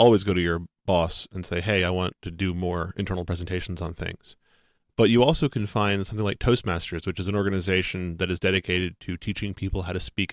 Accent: American